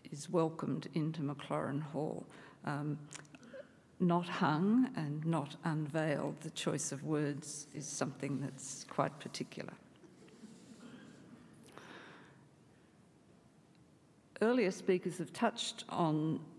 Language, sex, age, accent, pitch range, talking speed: English, female, 50-69, Australian, 150-210 Hz, 90 wpm